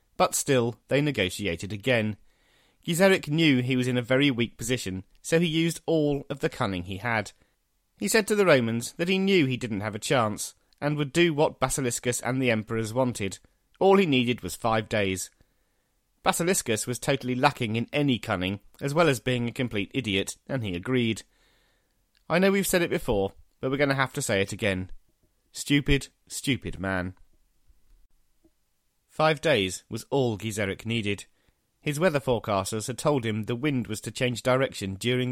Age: 30-49